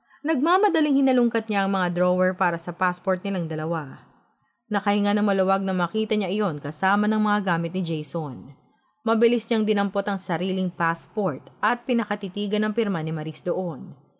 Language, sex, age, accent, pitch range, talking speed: Filipino, female, 20-39, native, 180-225 Hz, 155 wpm